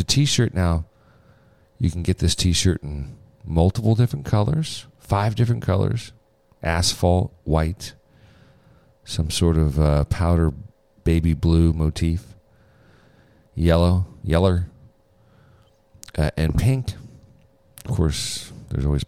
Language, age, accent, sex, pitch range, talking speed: English, 40-59, American, male, 90-115 Hz, 105 wpm